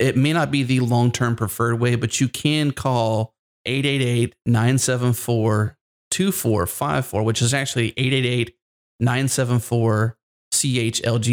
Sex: male